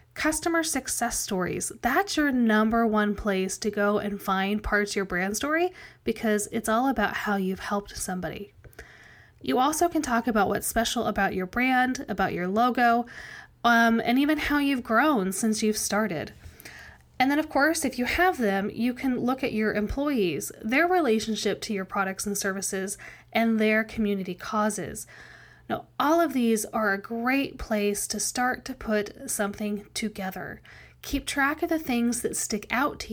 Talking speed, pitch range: 170 wpm, 205-260 Hz